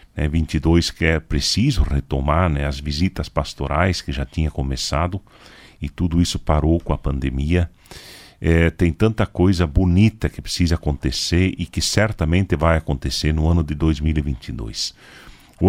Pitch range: 75-95 Hz